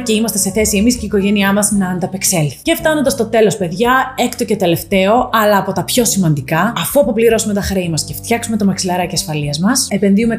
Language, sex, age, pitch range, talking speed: Greek, female, 30-49, 190-255 Hz, 210 wpm